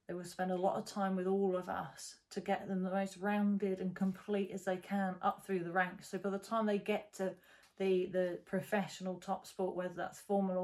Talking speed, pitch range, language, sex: 230 wpm, 185-210 Hz, English, female